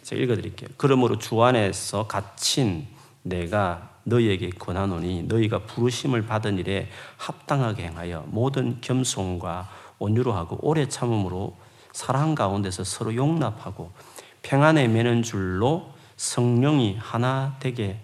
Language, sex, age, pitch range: Korean, male, 40-59, 100-135 Hz